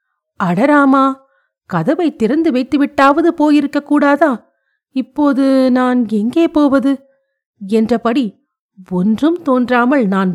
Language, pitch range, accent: Tamil, 205-295 Hz, native